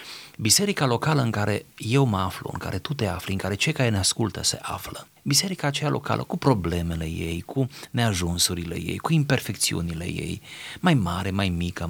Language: Romanian